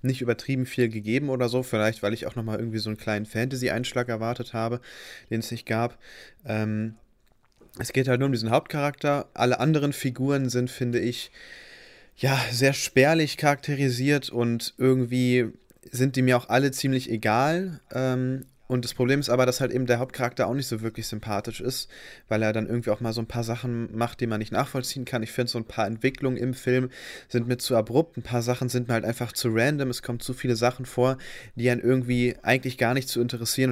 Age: 30-49